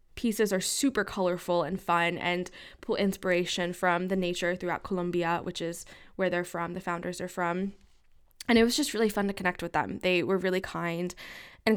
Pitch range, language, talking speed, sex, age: 175-205 Hz, English, 195 wpm, female, 10-29